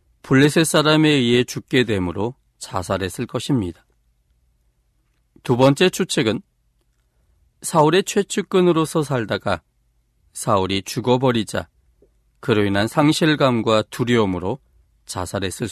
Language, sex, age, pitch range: Korean, male, 40-59, 85-145 Hz